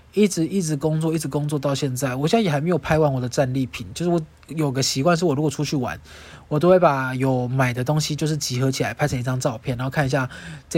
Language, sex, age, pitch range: Chinese, male, 20-39, 135-175 Hz